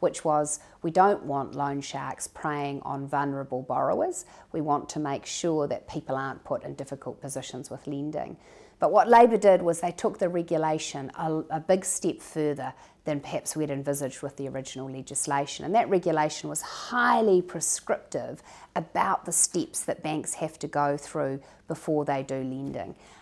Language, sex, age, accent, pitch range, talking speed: English, female, 40-59, Australian, 140-175 Hz, 170 wpm